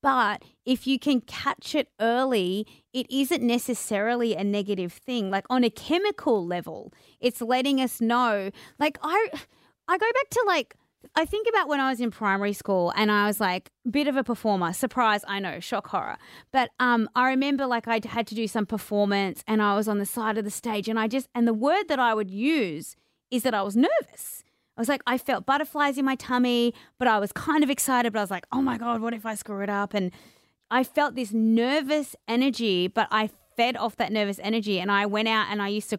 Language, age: English, 30-49